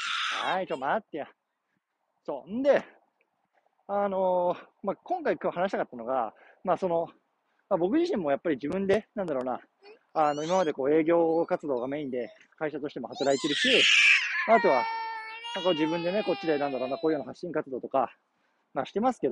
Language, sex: Japanese, male